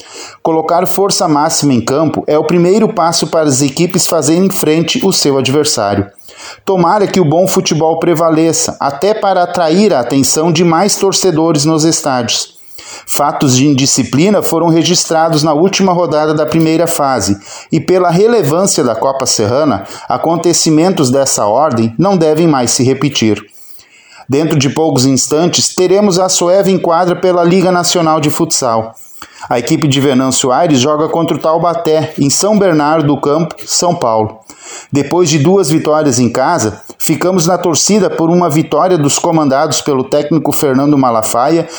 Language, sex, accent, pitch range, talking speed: Portuguese, male, Brazilian, 140-175 Hz, 150 wpm